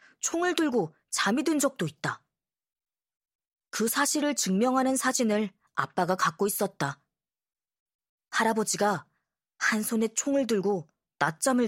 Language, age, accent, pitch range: Korean, 20-39, native, 175-240 Hz